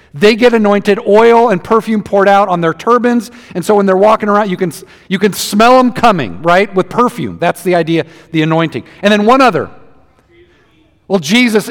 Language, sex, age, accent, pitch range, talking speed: English, male, 50-69, American, 185-240 Hz, 195 wpm